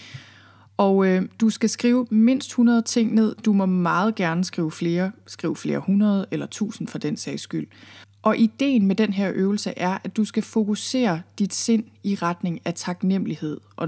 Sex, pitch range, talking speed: female, 160-215 Hz, 180 wpm